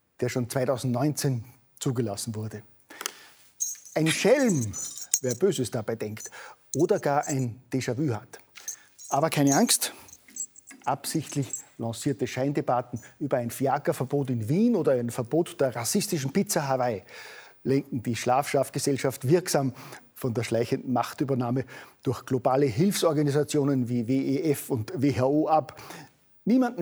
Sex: male